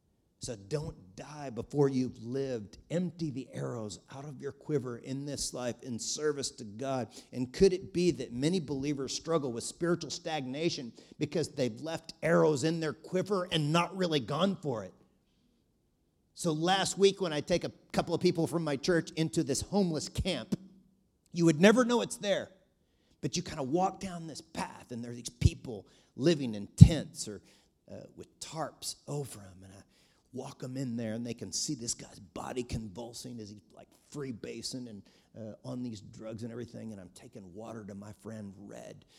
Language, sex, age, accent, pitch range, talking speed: English, male, 40-59, American, 125-185 Hz, 190 wpm